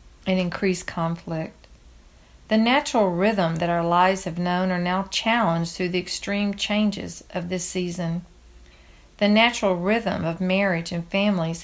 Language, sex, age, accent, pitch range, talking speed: English, female, 50-69, American, 165-205 Hz, 145 wpm